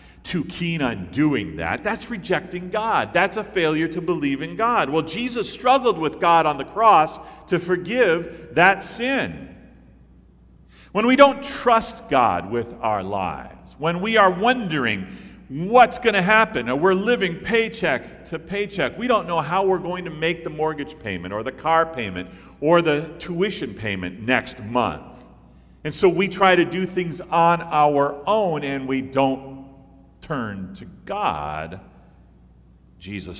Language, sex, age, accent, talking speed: English, male, 50-69, American, 155 wpm